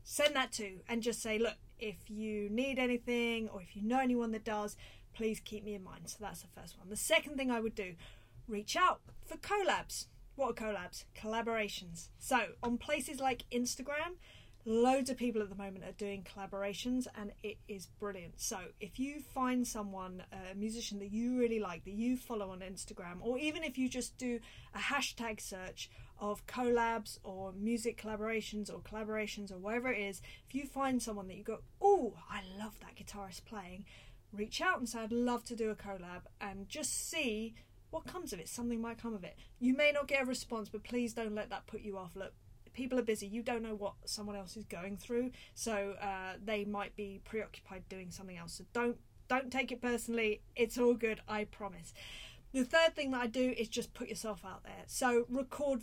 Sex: female